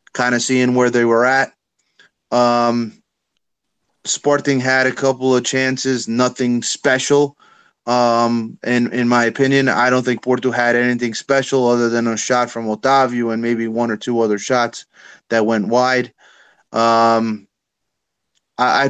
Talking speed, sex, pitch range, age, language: 145 wpm, male, 115-130 Hz, 30-49, English